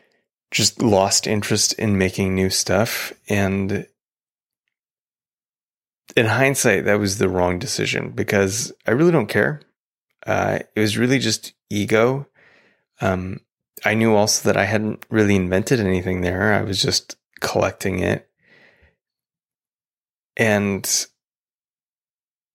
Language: English